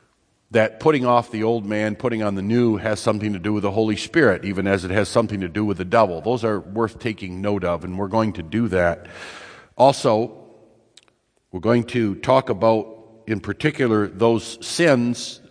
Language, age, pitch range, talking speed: English, 50-69, 100-120 Hz, 195 wpm